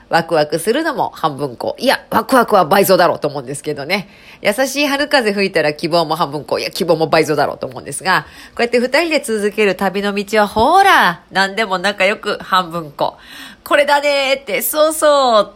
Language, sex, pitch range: Japanese, female, 165-255 Hz